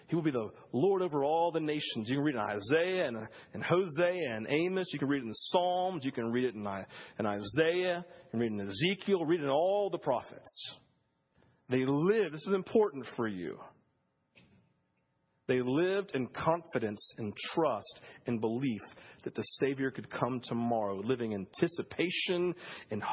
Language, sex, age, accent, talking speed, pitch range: English, male, 40-59, American, 175 wpm, 120-180 Hz